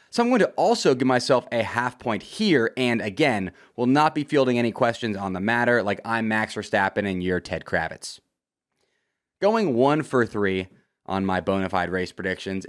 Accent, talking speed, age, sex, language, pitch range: American, 185 wpm, 20-39, male, English, 105-145 Hz